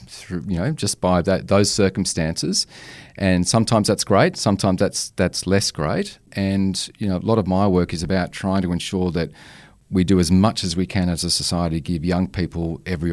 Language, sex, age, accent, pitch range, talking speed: English, male, 40-59, Australian, 85-100 Hz, 205 wpm